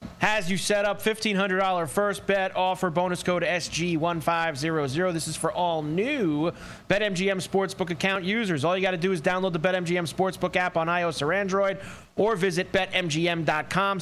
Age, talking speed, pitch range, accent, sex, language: 30-49, 165 wpm, 160-195 Hz, American, male, English